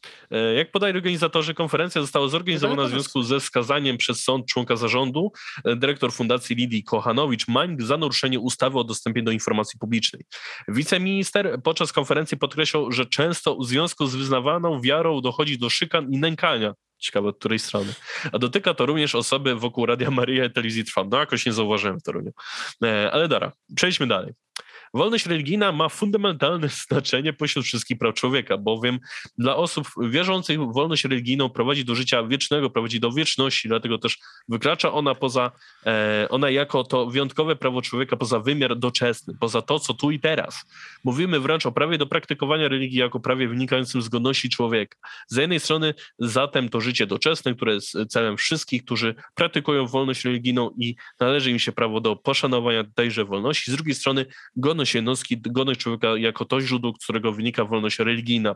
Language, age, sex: Polish, 20-39, male